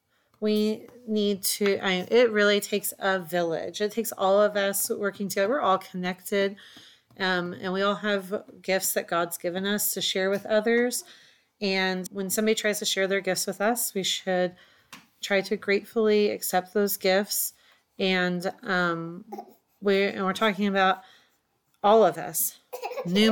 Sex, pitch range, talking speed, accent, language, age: female, 185-210 Hz, 150 wpm, American, English, 30-49